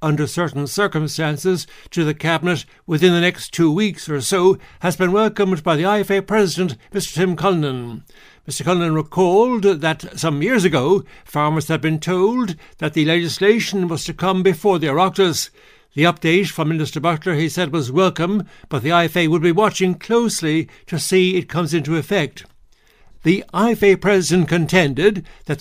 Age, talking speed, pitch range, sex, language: 60-79, 165 wpm, 155-195 Hz, male, English